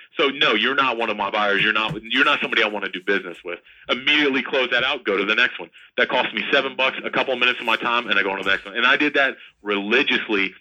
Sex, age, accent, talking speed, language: male, 40-59, American, 300 wpm, English